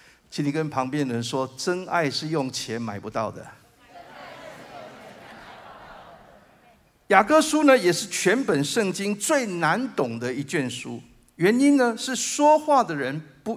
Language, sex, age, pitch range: Chinese, male, 50-69, 150-230 Hz